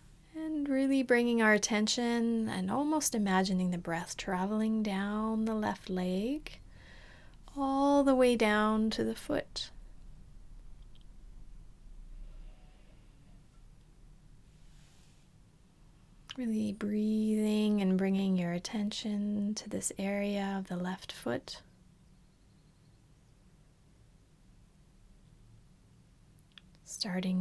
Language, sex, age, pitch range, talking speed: English, female, 30-49, 190-235 Hz, 80 wpm